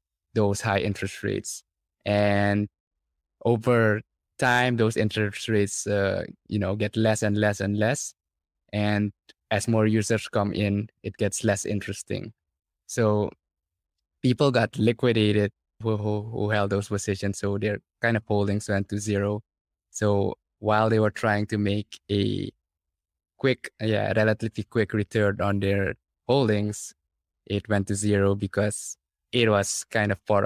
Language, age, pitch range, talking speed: English, 20-39, 100-110 Hz, 145 wpm